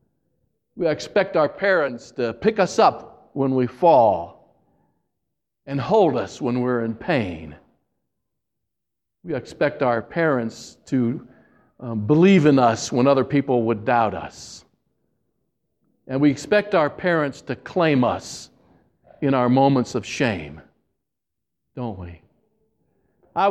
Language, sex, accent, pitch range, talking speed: English, male, American, 125-185 Hz, 125 wpm